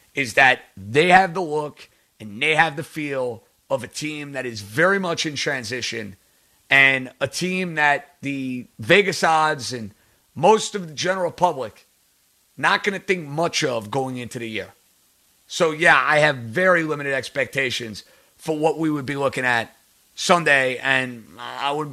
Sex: male